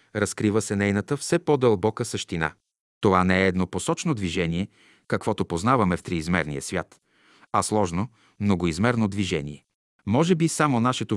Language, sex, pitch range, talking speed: Bulgarian, male, 95-115 Hz, 135 wpm